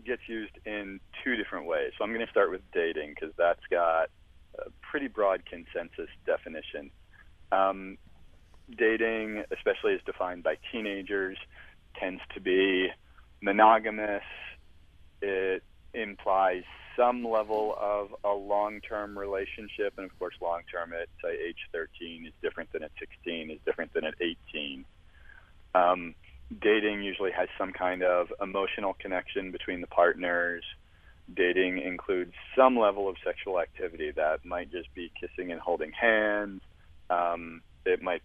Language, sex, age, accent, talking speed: English, male, 40-59, American, 140 wpm